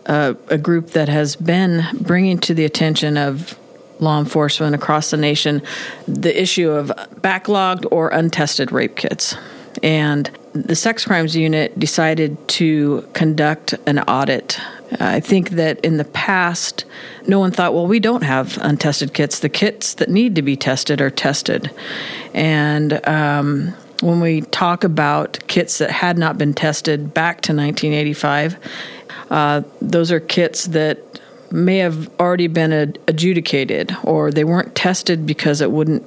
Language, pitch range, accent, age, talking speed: English, 150-175 Hz, American, 50-69, 150 wpm